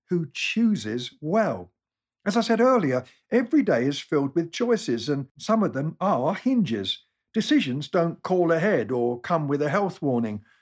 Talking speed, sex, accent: 165 wpm, male, British